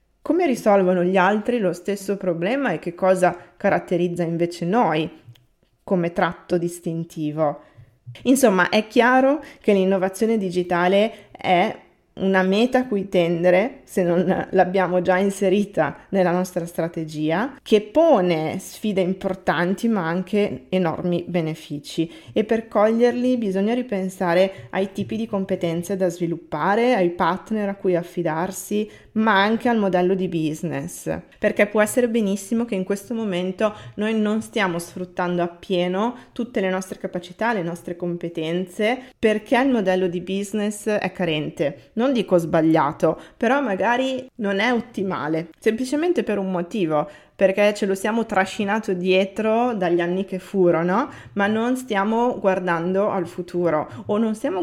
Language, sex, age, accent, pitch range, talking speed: Italian, female, 20-39, native, 175-215 Hz, 135 wpm